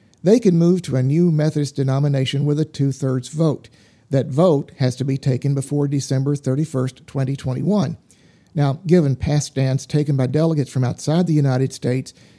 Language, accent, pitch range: English, American, 135-160 Hz